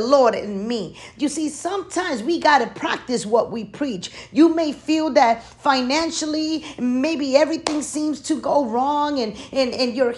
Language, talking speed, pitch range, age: English, 165 wpm, 255-315 Hz, 40-59